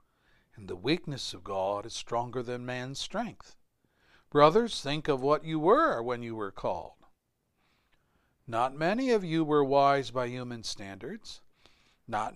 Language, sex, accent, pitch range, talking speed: English, male, American, 120-165 Hz, 145 wpm